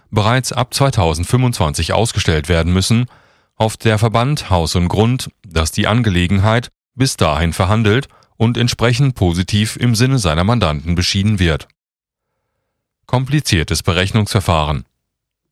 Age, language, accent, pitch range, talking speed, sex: 30-49, German, German, 90-120 Hz, 110 wpm, male